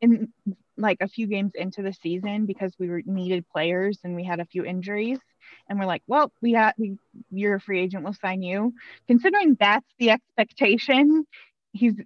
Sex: female